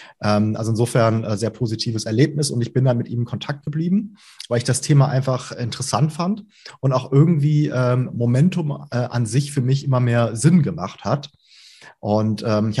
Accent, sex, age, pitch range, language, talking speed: German, male, 30-49, 115-140 Hz, German, 175 wpm